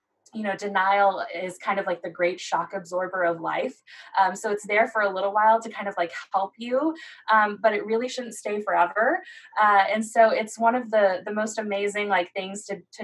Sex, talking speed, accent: female, 220 wpm, American